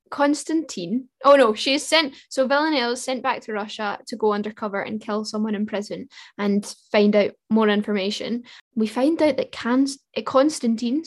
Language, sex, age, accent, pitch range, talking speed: English, female, 10-29, British, 215-270 Hz, 170 wpm